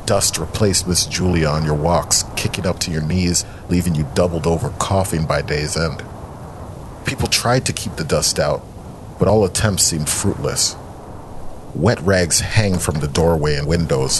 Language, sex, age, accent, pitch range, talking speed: English, male, 40-59, American, 80-130 Hz, 170 wpm